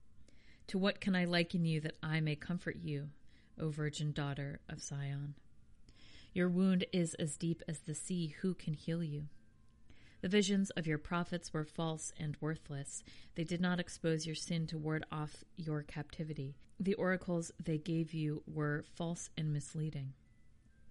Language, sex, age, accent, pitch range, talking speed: English, female, 40-59, American, 150-175 Hz, 165 wpm